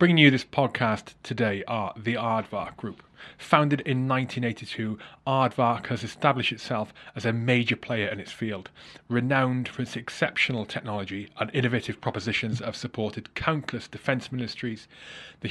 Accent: British